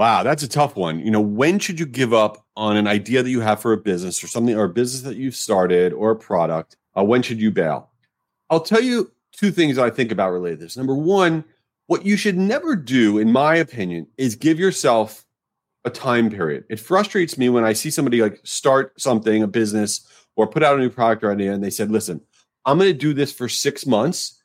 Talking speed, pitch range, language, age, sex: 235 wpm, 115-160 Hz, English, 40-59, male